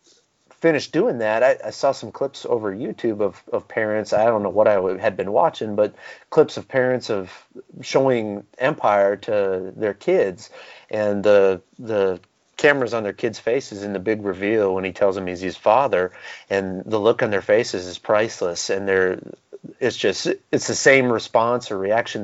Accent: American